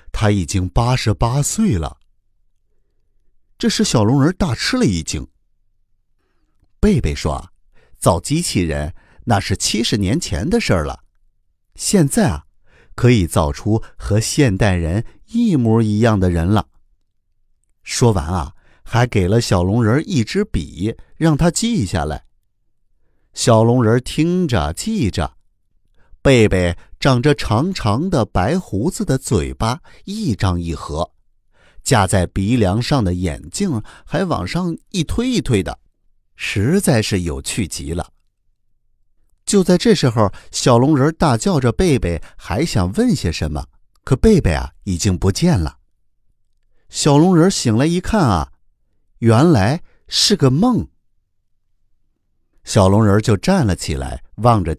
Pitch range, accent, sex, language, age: 90-135 Hz, native, male, Chinese, 50-69